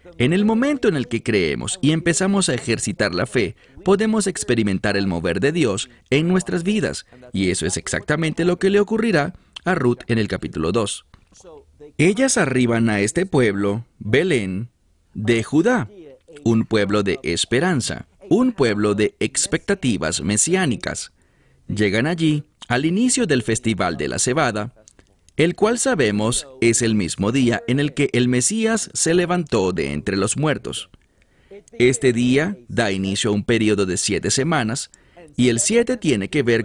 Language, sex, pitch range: English, male, 105-165 Hz